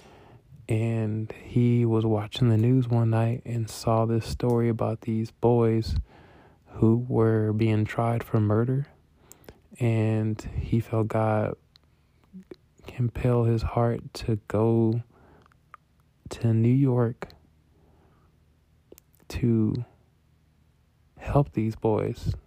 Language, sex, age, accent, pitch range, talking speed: English, male, 20-39, American, 100-115 Hz, 100 wpm